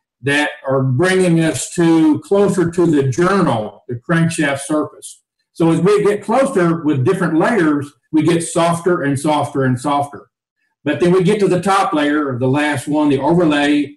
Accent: American